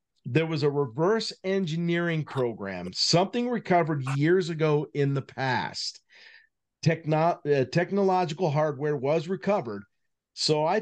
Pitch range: 135-165 Hz